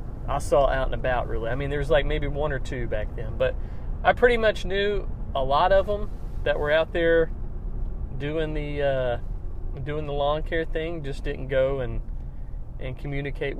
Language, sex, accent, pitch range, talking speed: English, male, American, 120-165 Hz, 190 wpm